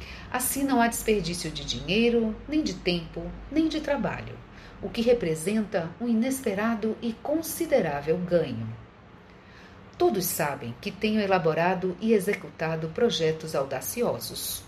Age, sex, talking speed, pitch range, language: 50-69, female, 120 wpm, 150-235 Hz, Portuguese